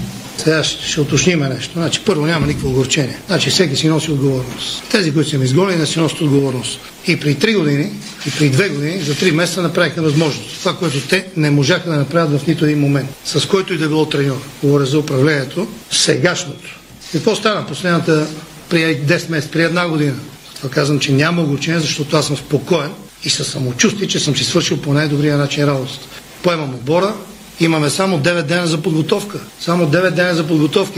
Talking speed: 195 wpm